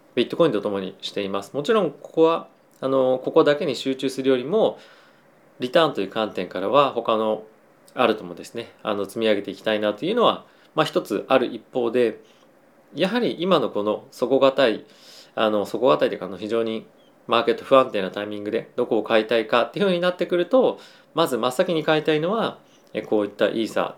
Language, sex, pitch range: Japanese, male, 105-155 Hz